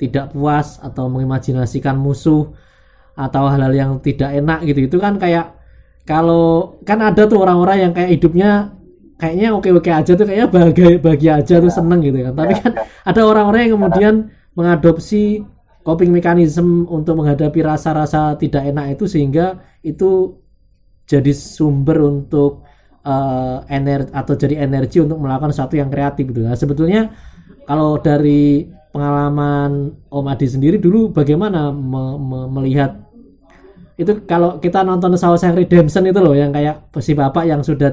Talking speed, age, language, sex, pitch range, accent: 145 wpm, 20-39, Indonesian, male, 140-175 Hz, native